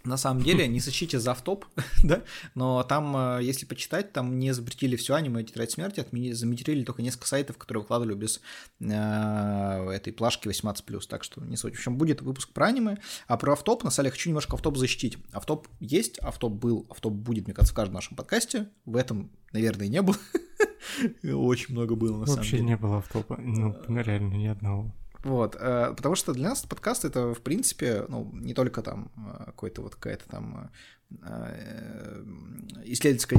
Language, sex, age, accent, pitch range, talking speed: Russian, male, 20-39, native, 115-150 Hz, 175 wpm